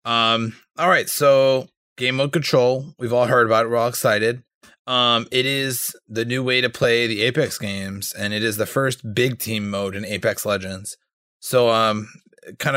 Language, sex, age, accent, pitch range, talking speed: English, male, 20-39, American, 105-125 Hz, 190 wpm